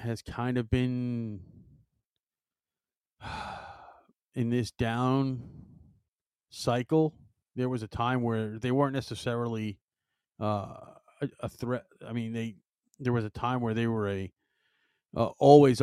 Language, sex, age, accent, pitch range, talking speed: English, male, 40-59, American, 105-125 Hz, 125 wpm